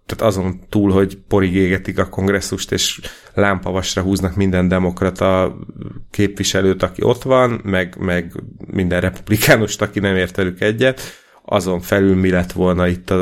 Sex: male